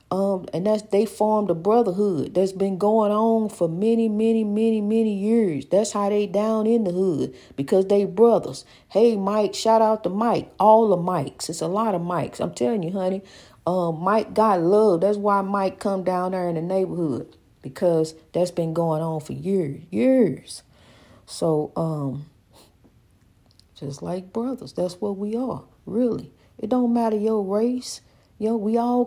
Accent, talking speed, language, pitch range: American, 175 wpm, English, 175-225 Hz